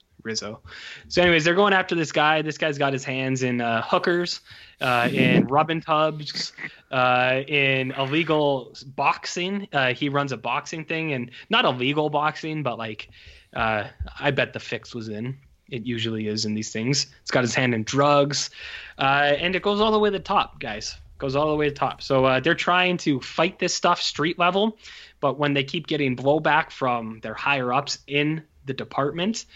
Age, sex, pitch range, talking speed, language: 20-39, male, 125-165 Hz, 195 wpm, English